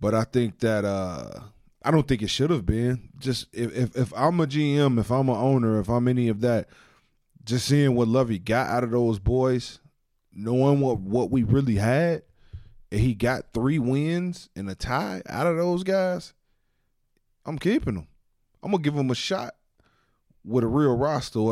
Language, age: English, 20-39